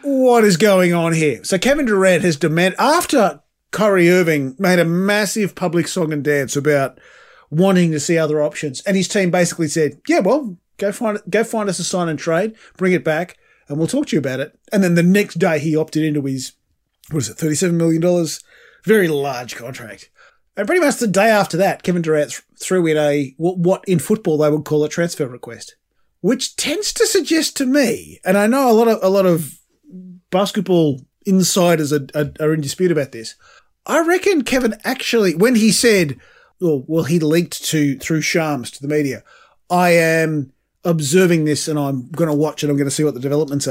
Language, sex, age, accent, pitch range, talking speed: English, male, 30-49, Australian, 155-210 Hz, 205 wpm